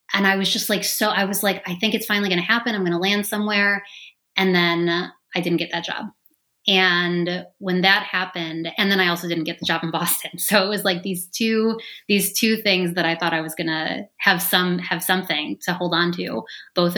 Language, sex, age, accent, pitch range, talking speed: English, female, 30-49, American, 170-200 Hz, 235 wpm